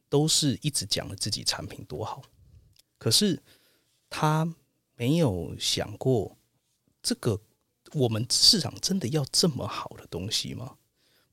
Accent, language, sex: native, Chinese, male